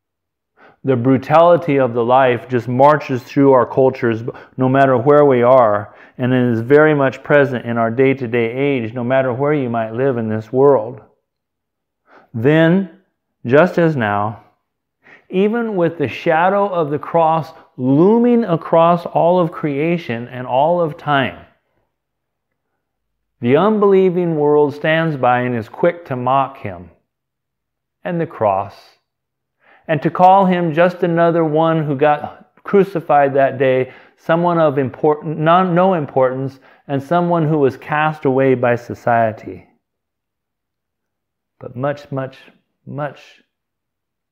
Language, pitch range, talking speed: English, 125-165 Hz, 135 wpm